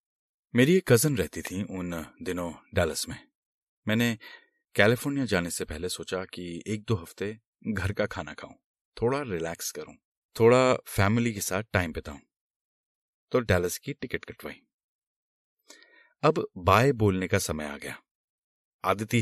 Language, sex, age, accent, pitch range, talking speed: Hindi, male, 30-49, native, 95-140 Hz, 140 wpm